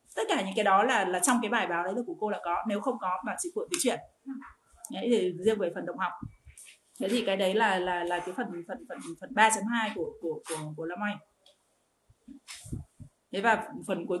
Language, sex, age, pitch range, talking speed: Vietnamese, female, 20-39, 190-245 Hz, 220 wpm